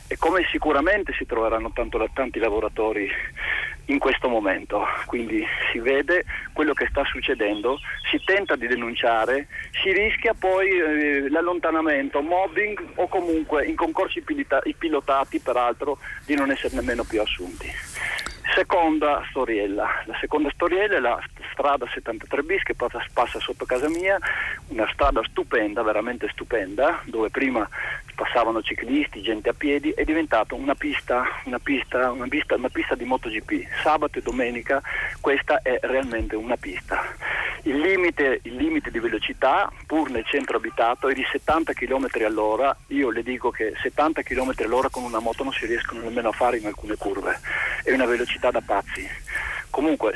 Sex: male